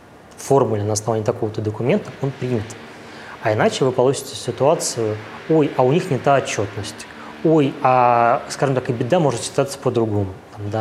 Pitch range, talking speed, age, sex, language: 110-140 Hz, 155 wpm, 20-39, male, Russian